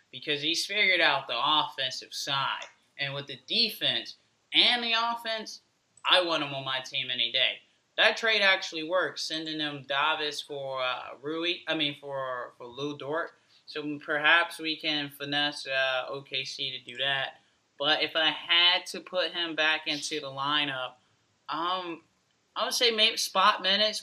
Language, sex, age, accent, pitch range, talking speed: English, male, 20-39, American, 130-160 Hz, 165 wpm